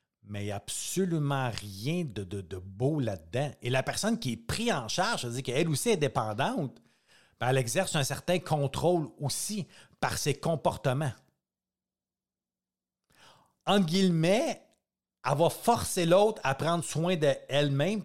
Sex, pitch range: male, 120-170 Hz